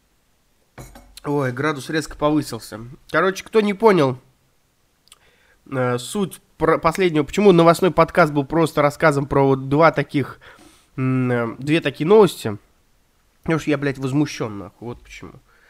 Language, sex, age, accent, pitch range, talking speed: Russian, male, 20-39, native, 120-165 Hz, 120 wpm